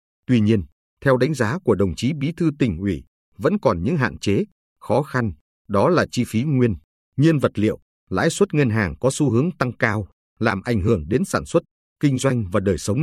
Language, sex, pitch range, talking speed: Vietnamese, male, 95-140 Hz, 215 wpm